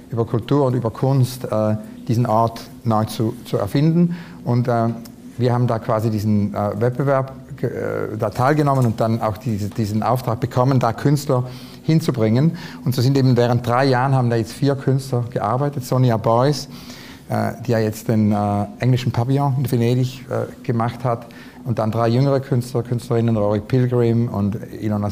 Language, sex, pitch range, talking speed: German, male, 115-135 Hz, 155 wpm